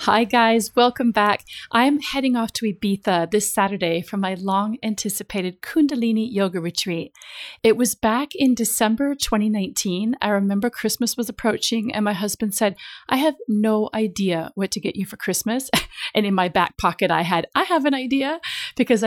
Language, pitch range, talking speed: English, 185-230 Hz, 170 wpm